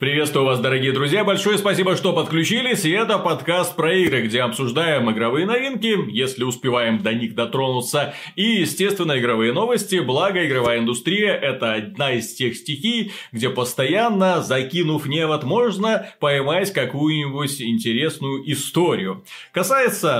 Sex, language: male, Russian